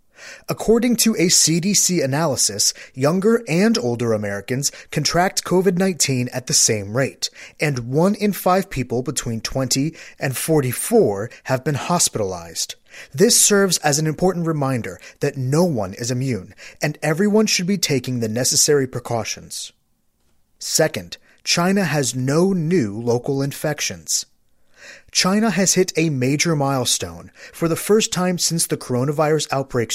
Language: English